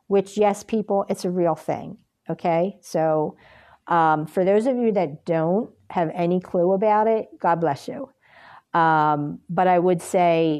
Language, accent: English, American